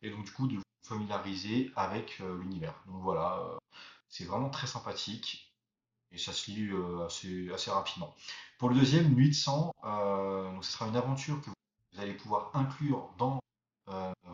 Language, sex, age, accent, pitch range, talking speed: French, male, 30-49, French, 95-130 Hz, 175 wpm